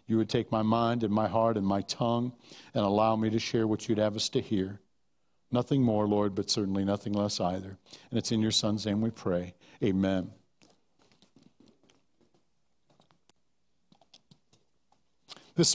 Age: 60-79